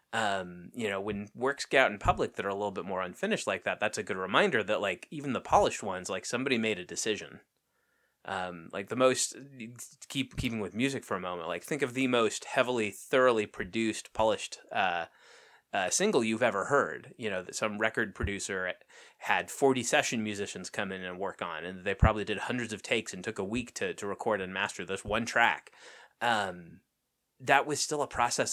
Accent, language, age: American, English, 30-49